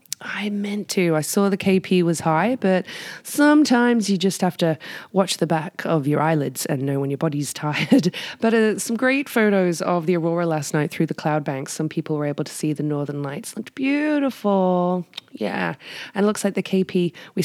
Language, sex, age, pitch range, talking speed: English, female, 20-39, 155-205 Hz, 205 wpm